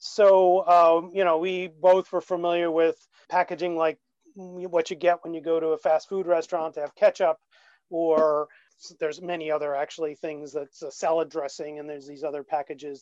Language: English